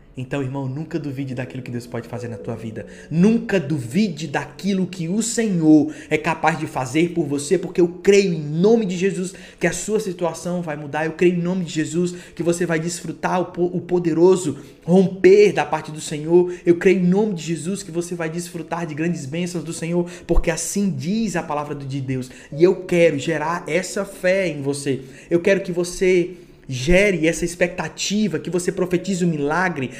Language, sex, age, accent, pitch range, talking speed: Portuguese, male, 20-39, Brazilian, 150-185 Hz, 195 wpm